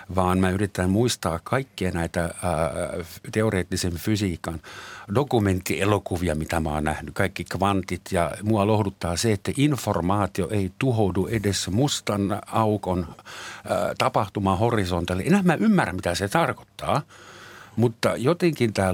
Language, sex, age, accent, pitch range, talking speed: Finnish, male, 60-79, native, 90-120 Hz, 125 wpm